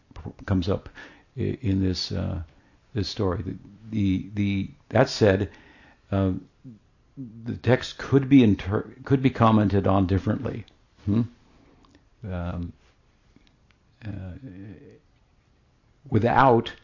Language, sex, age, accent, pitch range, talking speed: English, male, 60-79, American, 95-115 Hz, 95 wpm